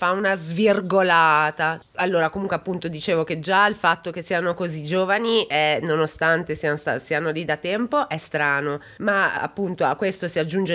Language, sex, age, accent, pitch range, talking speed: Italian, female, 20-39, native, 170-225 Hz, 165 wpm